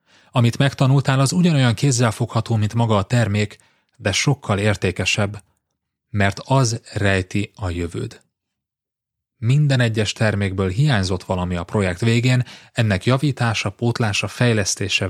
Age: 30-49